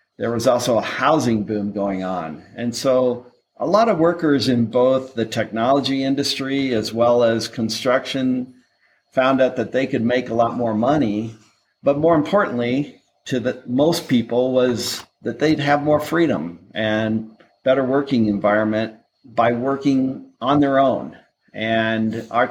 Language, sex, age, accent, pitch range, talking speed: English, male, 50-69, American, 115-140 Hz, 150 wpm